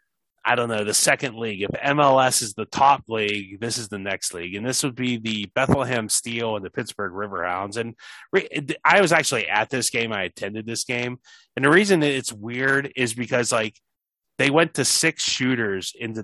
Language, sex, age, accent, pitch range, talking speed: English, male, 30-49, American, 105-130 Hz, 200 wpm